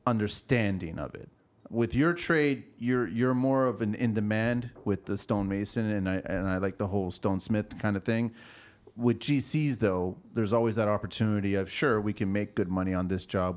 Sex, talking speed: male, 200 wpm